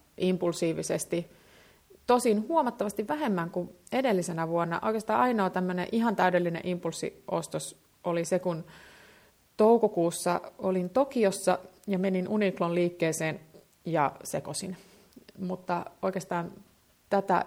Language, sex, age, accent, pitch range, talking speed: Finnish, female, 30-49, native, 175-210 Hz, 95 wpm